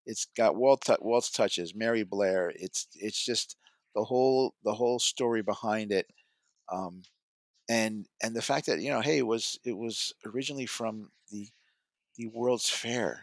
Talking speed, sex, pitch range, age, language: 160 wpm, male, 110-150 Hz, 50-69, English